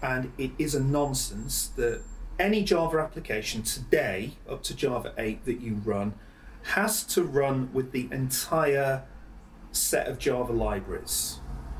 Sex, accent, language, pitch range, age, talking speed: male, British, English, 115-160 Hz, 30-49, 135 wpm